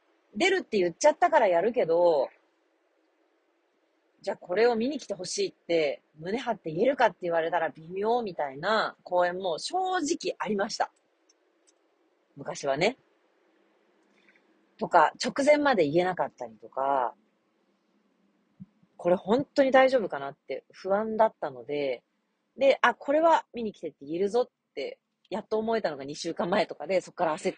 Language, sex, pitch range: Japanese, female, 150-230 Hz